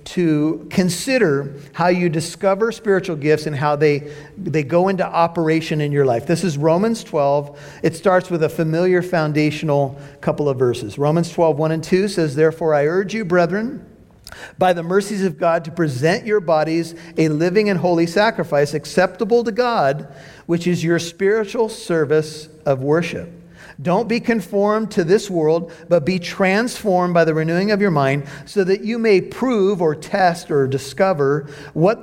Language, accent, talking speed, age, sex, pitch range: English, American, 165 wpm, 50-69, male, 150-195 Hz